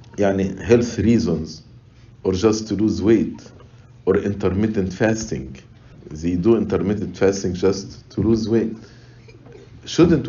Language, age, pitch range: English, 50-69, 100-125 Hz